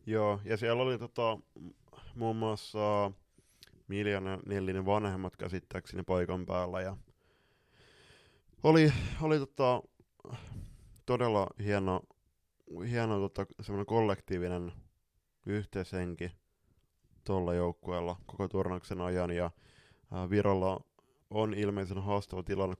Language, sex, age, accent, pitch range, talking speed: Finnish, male, 20-39, native, 90-105 Hz, 90 wpm